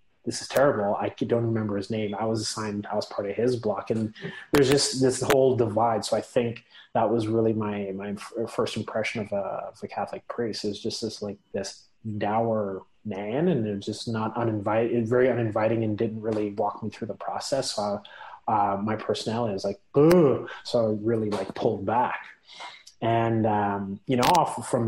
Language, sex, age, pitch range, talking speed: English, male, 30-49, 105-115 Hz, 200 wpm